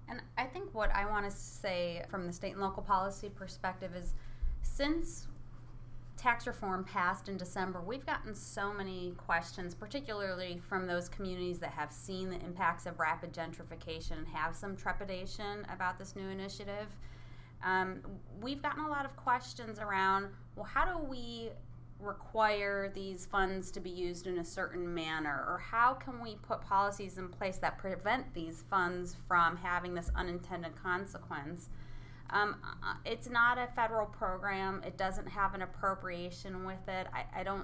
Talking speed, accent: 160 wpm, American